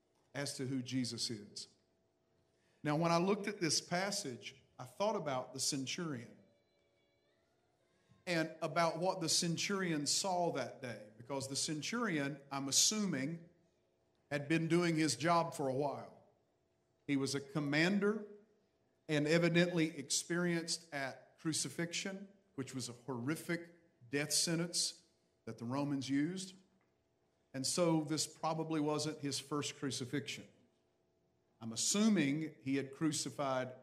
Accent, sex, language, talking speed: American, male, English, 125 wpm